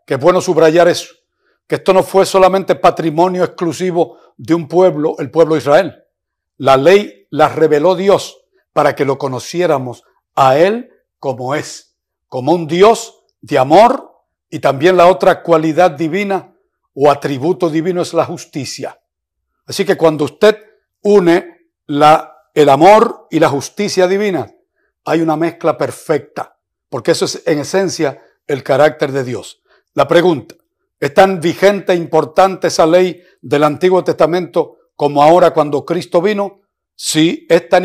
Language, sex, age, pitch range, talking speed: Spanish, male, 60-79, 155-190 Hz, 145 wpm